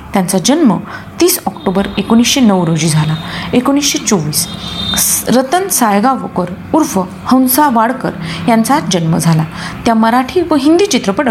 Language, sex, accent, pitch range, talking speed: Marathi, female, native, 185-265 Hz, 125 wpm